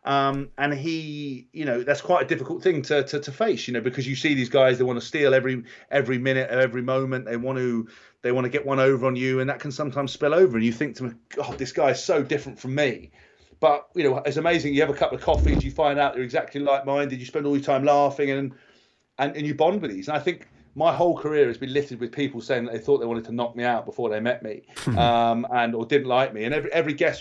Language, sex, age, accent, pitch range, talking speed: English, male, 30-49, British, 125-145 Hz, 280 wpm